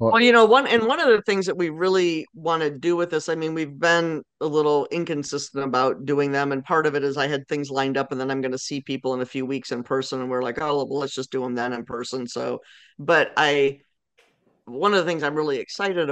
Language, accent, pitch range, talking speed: English, American, 130-150 Hz, 270 wpm